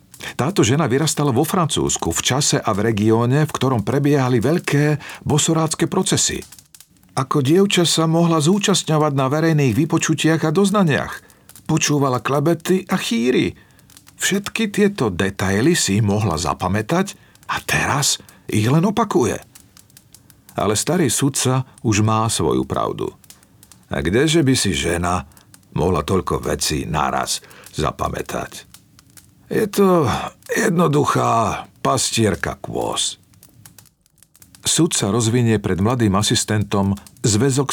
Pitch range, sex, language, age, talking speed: 105-160 Hz, male, Slovak, 50-69, 110 wpm